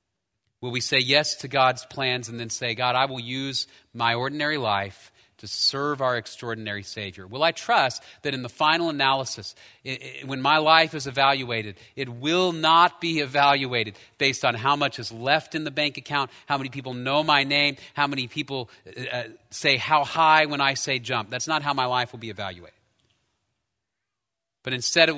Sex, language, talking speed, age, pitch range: male, English, 185 wpm, 40-59, 110-140 Hz